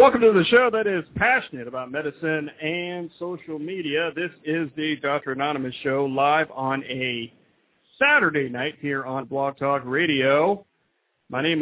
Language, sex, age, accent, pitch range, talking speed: English, male, 50-69, American, 130-180 Hz, 155 wpm